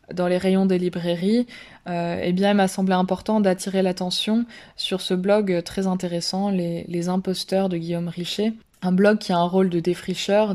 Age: 20-39